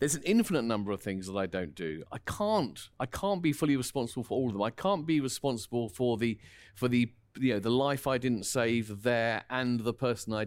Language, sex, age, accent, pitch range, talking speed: English, male, 40-59, British, 105-145 Hz, 235 wpm